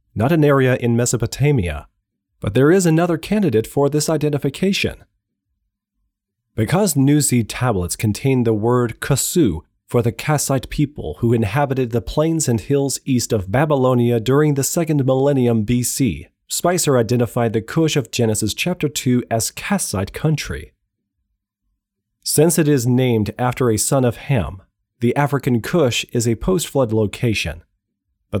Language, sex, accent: English, male, American